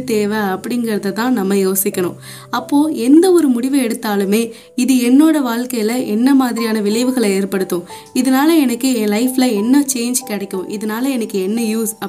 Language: Tamil